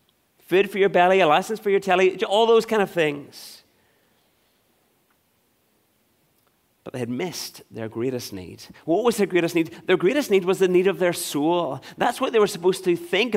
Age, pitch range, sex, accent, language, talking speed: 30-49, 125-190 Hz, male, British, English, 190 wpm